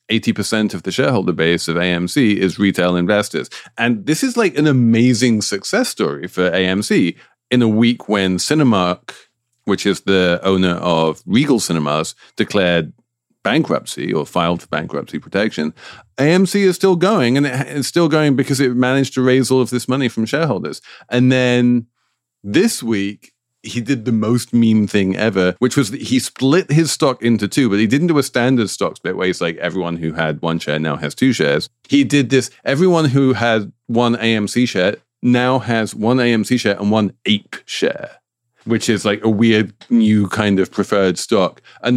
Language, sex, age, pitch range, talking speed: English, male, 40-59, 95-125 Hz, 180 wpm